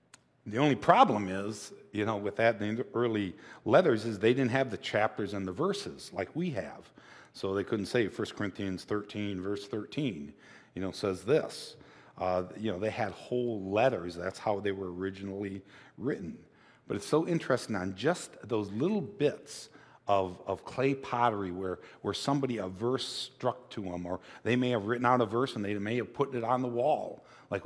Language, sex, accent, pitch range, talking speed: English, male, American, 100-130 Hz, 195 wpm